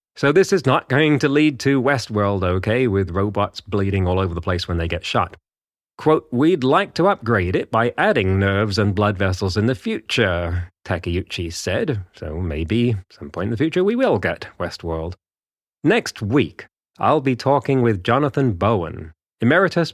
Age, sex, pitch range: 30-49, male, 90-130 Hz